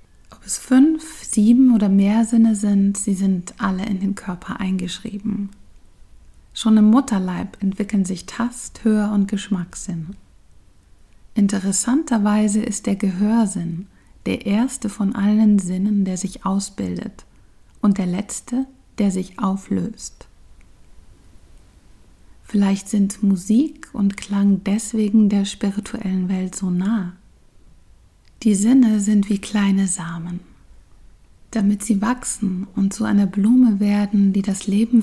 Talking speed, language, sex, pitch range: 120 wpm, German, female, 175-215 Hz